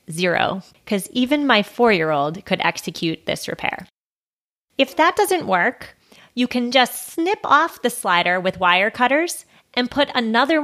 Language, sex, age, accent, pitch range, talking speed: English, female, 30-49, American, 185-250 Hz, 145 wpm